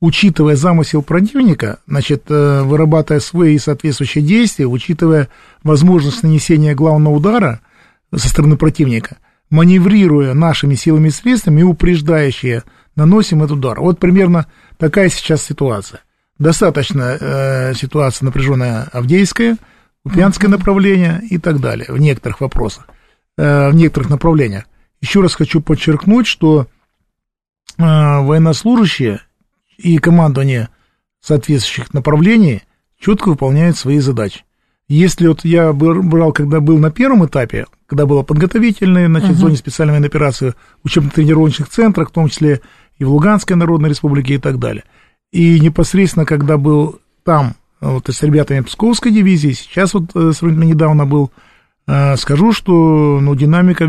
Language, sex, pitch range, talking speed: Russian, male, 140-170 Hz, 125 wpm